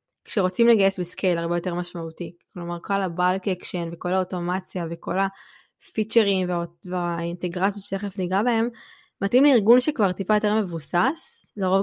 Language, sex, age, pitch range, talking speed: Hebrew, female, 20-39, 180-210 Hz, 130 wpm